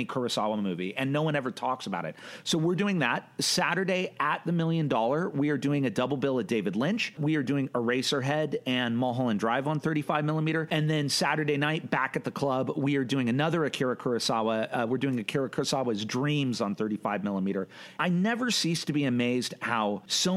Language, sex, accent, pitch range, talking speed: English, male, American, 120-150 Hz, 205 wpm